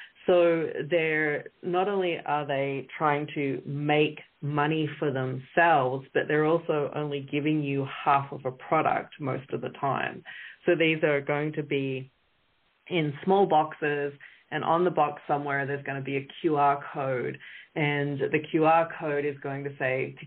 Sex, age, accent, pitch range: female, 30-49, Australian, 140-165 Hz